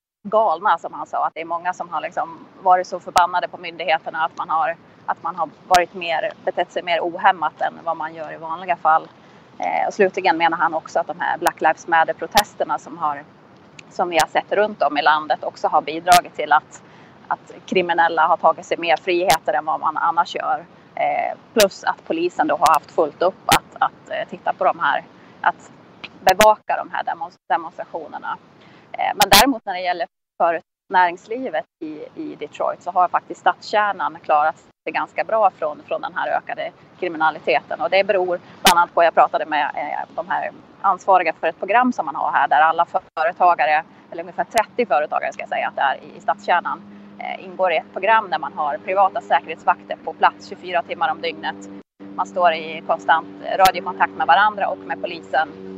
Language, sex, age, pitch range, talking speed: English, female, 30-49, 160-205 Hz, 185 wpm